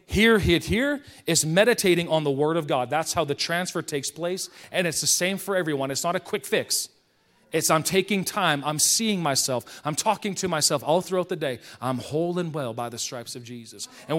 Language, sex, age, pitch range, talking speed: English, male, 40-59, 140-185 Hz, 220 wpm